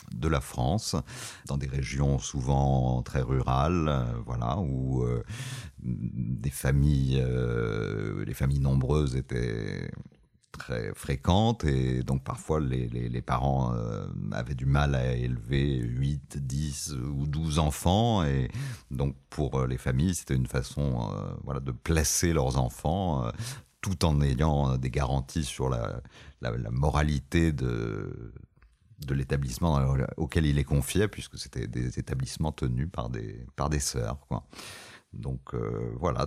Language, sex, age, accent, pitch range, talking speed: French, male, 40-59, French, 65-80 Hz, 140 wpm